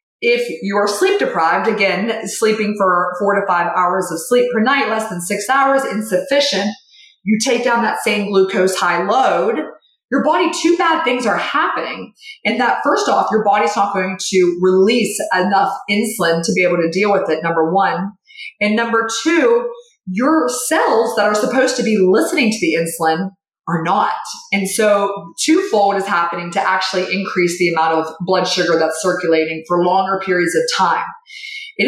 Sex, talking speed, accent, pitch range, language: female, 175 wpm, American, 185-260 Hz, English